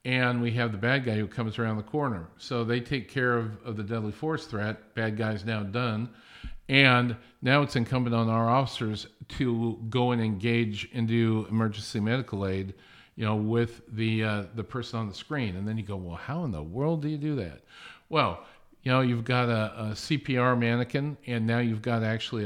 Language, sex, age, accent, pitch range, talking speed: English, male, 50-69, American, 110-130 Hz, 210 wpm